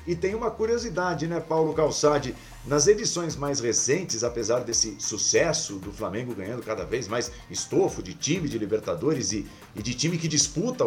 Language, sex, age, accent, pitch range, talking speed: Portuguese, male, 50-69, Brazilian, 115-170 Hz, 170 wpm